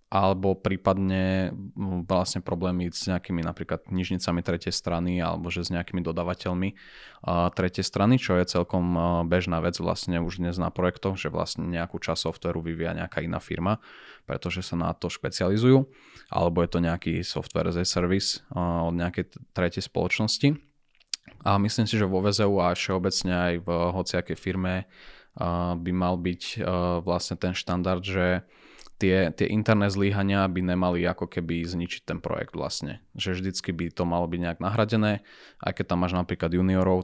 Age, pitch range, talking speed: 20-39, 85-95 Hz, 160 wpm